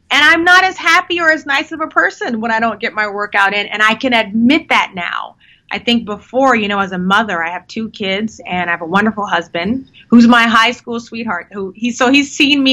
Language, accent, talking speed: English, American, 250 wpm